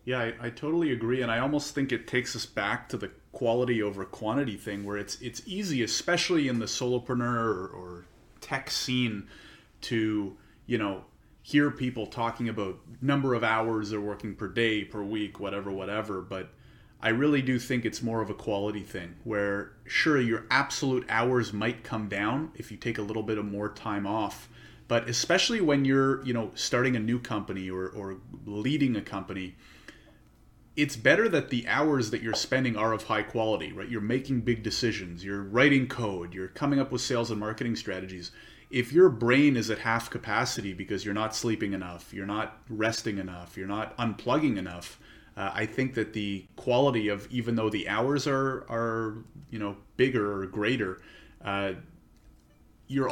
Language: English